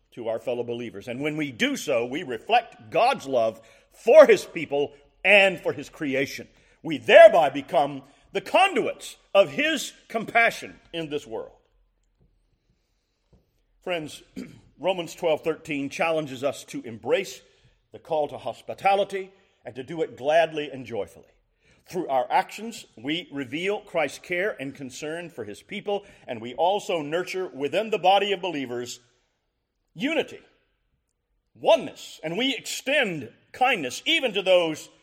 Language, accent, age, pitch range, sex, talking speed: English, American, 50-69, 135-200 Hz, male, 135 wpm